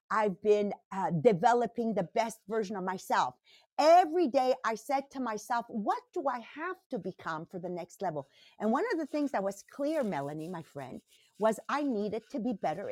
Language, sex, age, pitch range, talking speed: English, female, 50-69, 210-300 Hz, 195 wpm